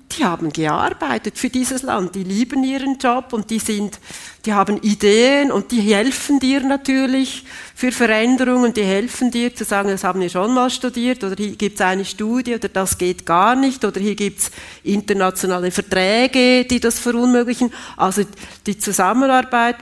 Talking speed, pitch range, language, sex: 175 wpm, 190-245 Hz, German, female